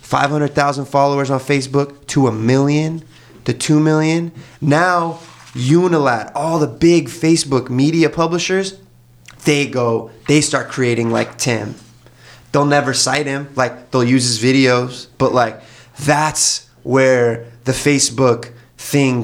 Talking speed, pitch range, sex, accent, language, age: 130 wpm, 120-150 Hz, male, American, English, 20-39